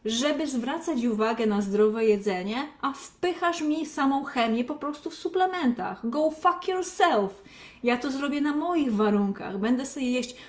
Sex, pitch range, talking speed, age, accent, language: female, 225-295 Hz, 155 wpm, 20-39, native, Polish